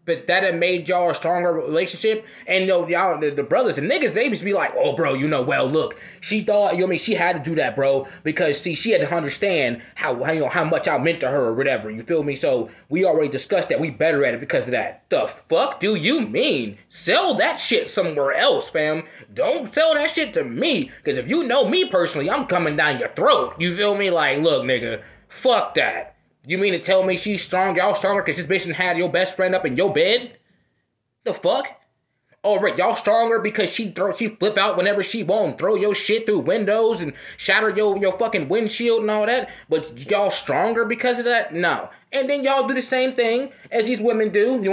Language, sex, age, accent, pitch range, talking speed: English, male, 20-39, American, 175-230 Hz, 235 wpm